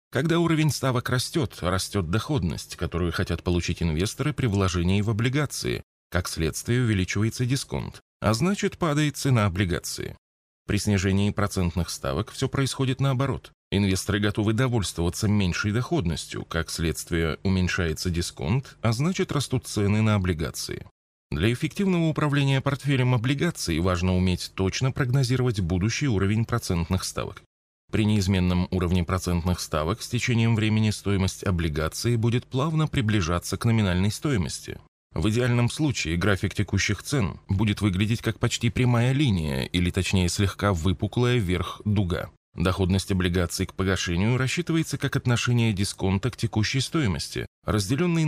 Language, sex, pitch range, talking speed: Russian, male, 90-125 Hz, 130 wpm